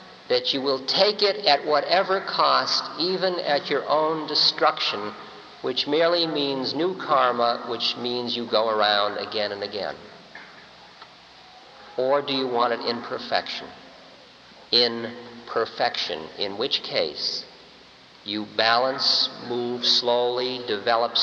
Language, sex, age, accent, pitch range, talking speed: English, male, 50-69, American, 125-190 Hz, 120 wpm